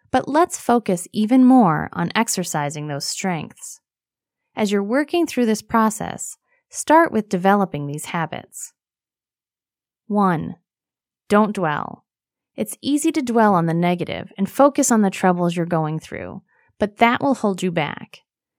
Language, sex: English, female